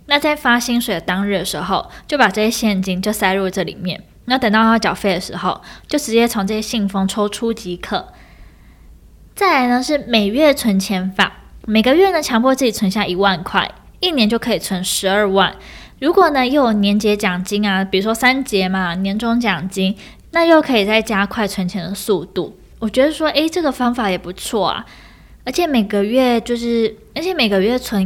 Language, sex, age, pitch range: Chinese, female, 20-39, 195-245 Hz